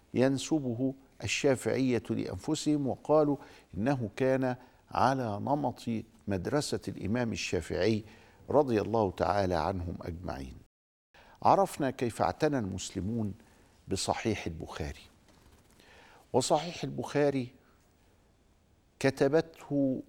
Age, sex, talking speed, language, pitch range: 50-69, male, 75 wpm, Arabic, 95-135 Hz